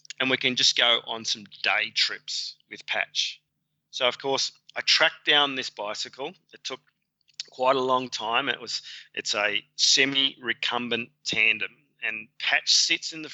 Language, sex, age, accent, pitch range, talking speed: English, male, 30-49, Australian, 115-135 Hz, 160 wpm